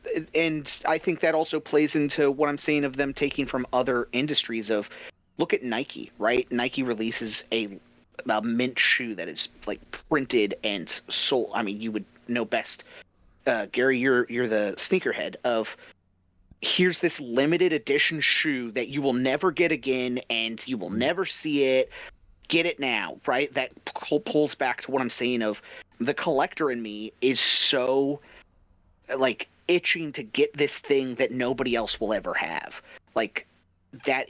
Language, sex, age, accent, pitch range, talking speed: English, male, 30-49, American, 115-150 Hz, 165 wpm